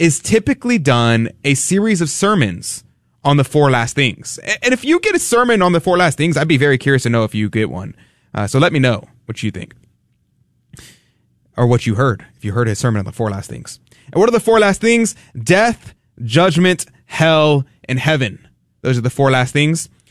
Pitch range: 120-165 Hz